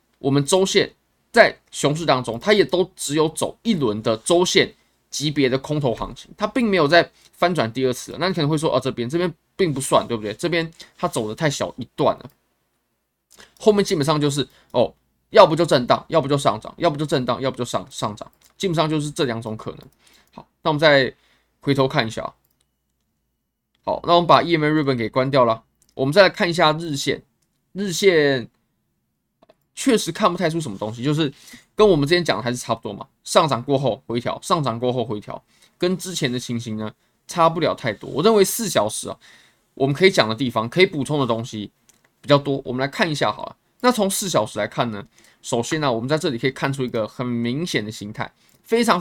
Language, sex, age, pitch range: Chinese, male, 20-39, 120-175 Hz